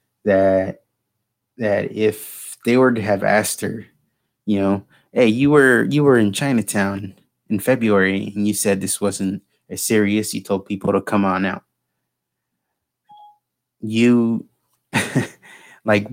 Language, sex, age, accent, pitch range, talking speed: English, male, 20-39, American, 100-115 Hz, 135 wpm